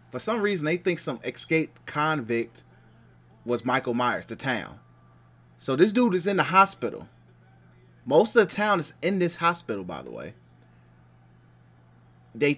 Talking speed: 155 wpm